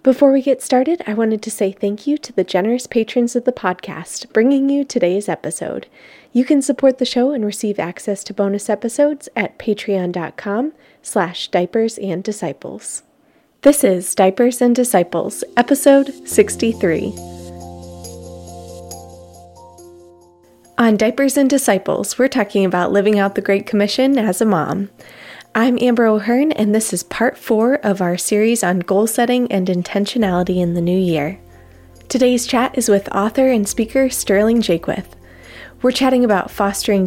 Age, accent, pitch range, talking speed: 20-39, American, 185-245 Hz, 145 wpm